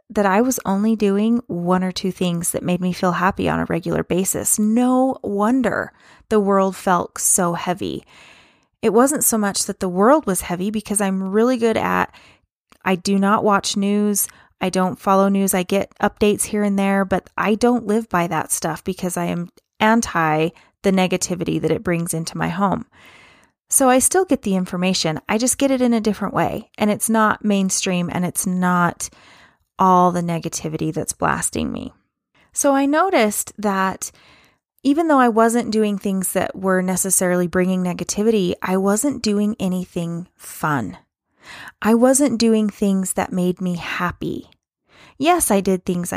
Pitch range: 180-230 Hz